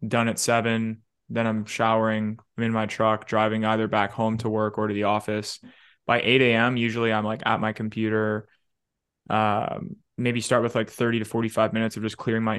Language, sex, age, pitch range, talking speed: English, male, 20-39, 105-115 Hz, 190 wpm